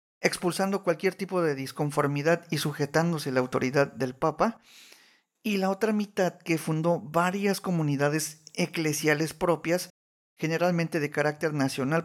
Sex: male